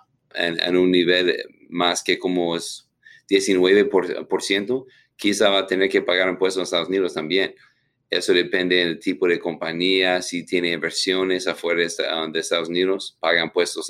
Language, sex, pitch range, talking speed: Spanish, male, 90-115 Hz, 175 wpm